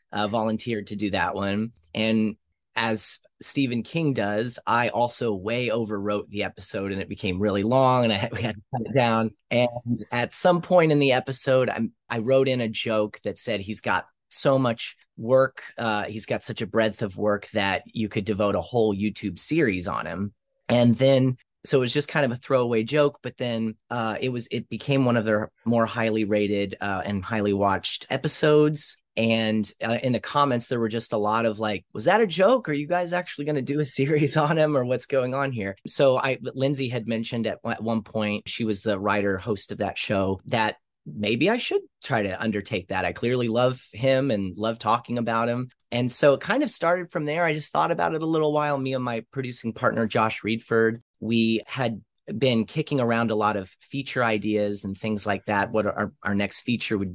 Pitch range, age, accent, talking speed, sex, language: 105-130 Hz, 30-49, American, 215 wpm, male, English